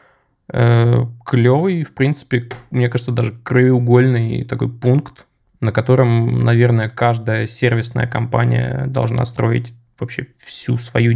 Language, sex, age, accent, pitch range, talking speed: Russian, male, 20-39, native, 120-130 Hz, 110 wpm